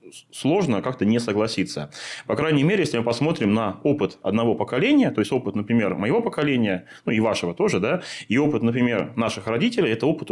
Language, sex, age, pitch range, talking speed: Russian, male, 20-39, 100-130 Hz, 185 wpm